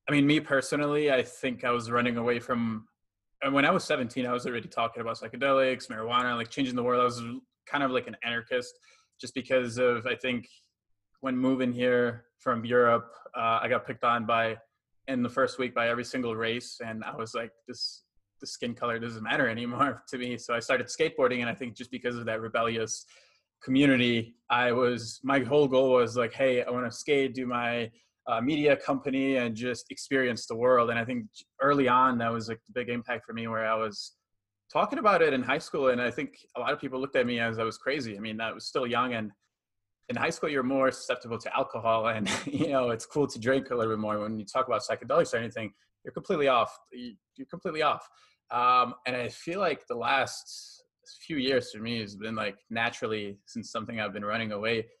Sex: male